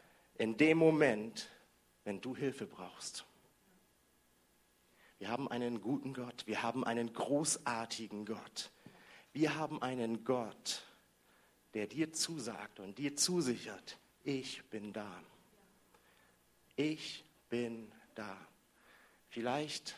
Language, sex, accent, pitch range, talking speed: German, male, German, 110-135 Hz, 100 wpm